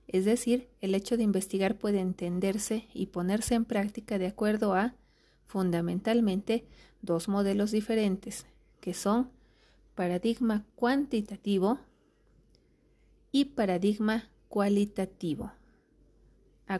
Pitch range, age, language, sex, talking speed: 190-230 Hz, 40-59, Spanish, female, 95 wpm